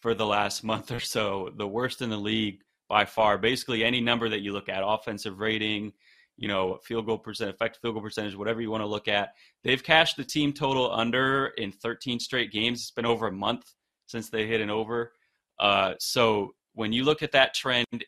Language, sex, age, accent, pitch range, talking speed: English, male, 20-39, American, 110-140 Hz, 215 wpm